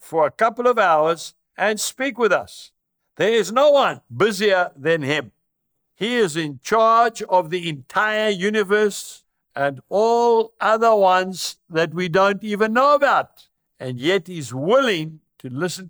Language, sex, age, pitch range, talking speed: English, male, 60-79, 165-225 Hz, 150 wpm